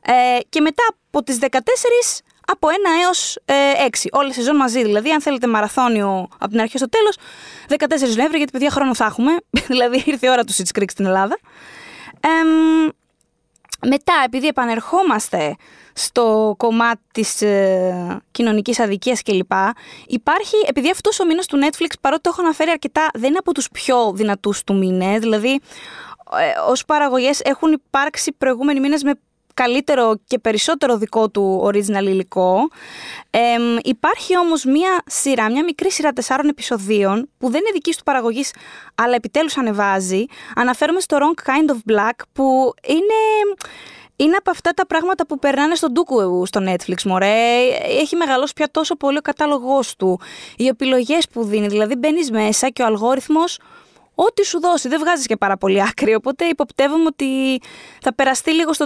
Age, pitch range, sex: 20-39, 225-315 Hz, female